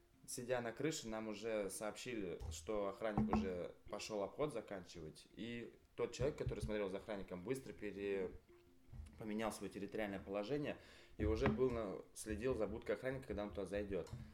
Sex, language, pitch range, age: male, Russian, 95-115 Hz, 20-39